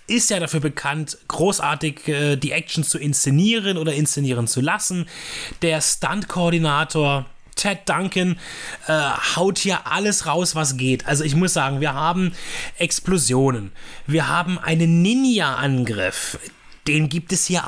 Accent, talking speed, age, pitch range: German, 140 wpm, 30-49, 135-175 Hz